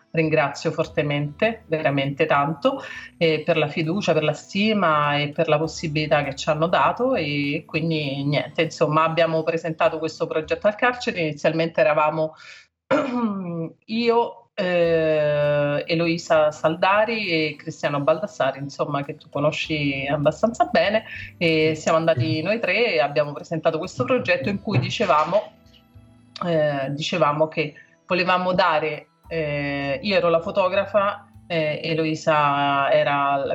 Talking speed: 125 wpm